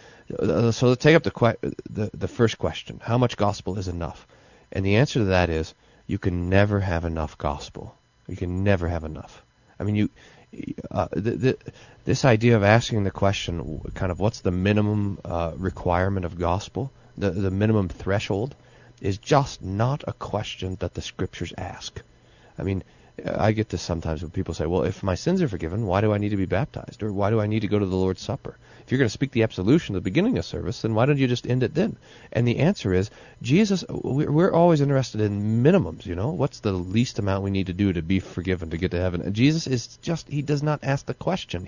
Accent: American